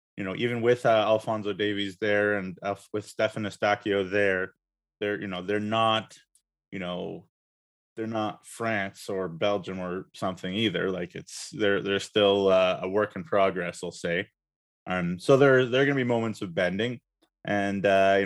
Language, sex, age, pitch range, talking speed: English, male, 20-39, 100-125 Hz, 180 wpm